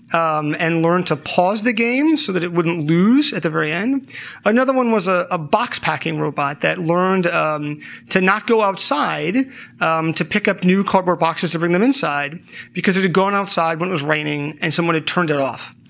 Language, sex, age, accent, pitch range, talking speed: English, male, 30-49, American, 160-200 Hz, 210 wpm